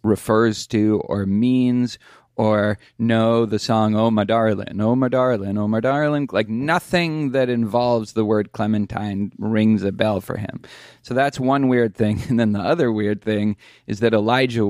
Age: 30-49